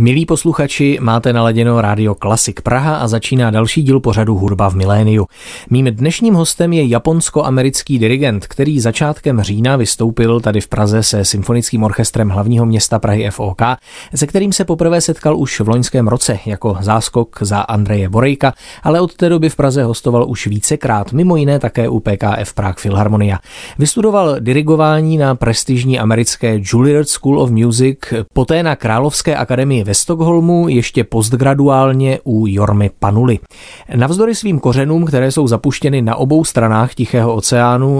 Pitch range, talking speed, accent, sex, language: 110-145 Hz, 150 wpm, native, male, Czech